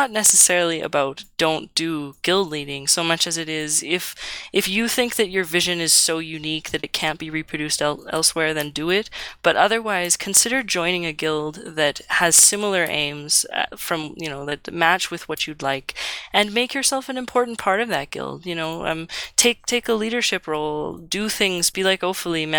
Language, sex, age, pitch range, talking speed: English, female, 20-39, 150-185 Hz, 190 wpm